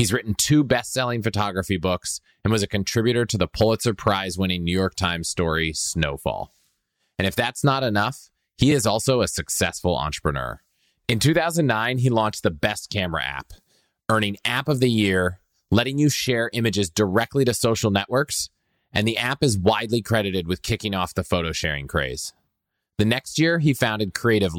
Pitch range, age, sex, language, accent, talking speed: 90-125 Hz, 30-49, male, English, American, 175 wpm